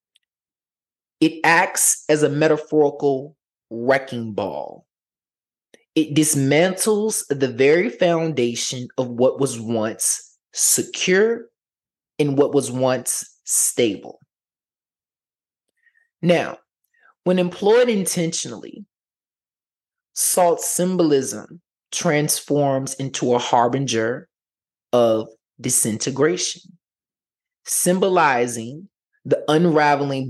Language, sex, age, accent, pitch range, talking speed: English, male, 20-39, American, 125-160 Hz, 75 wpm